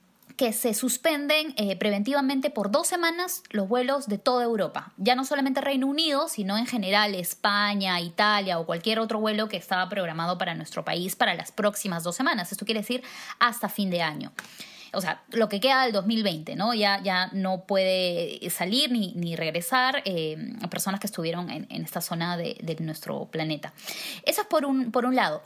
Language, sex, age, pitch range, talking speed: Spanish, female, 20-39, 190-255 Hz, 190 wpm